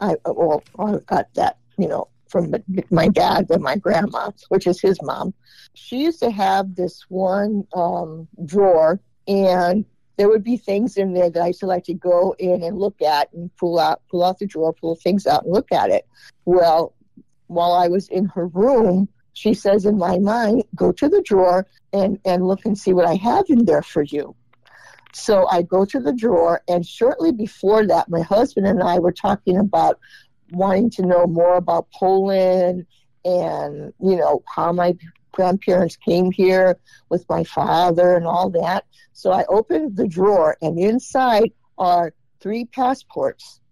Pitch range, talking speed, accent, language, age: 170-200 Hz, 180 wpm, American, English, 50-69